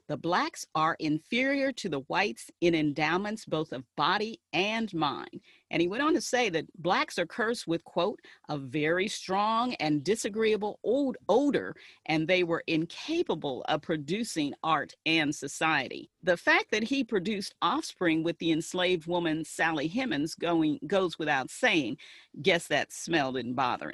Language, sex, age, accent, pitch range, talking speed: English, female, 40-59, American, 155-225 Hz, 160 wpm